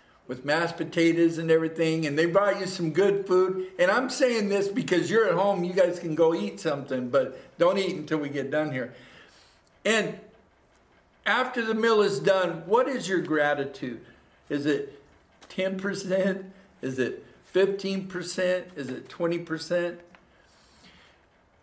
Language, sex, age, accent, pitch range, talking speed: English, male, 50-69, American, 155-185 Hz, 145 wpm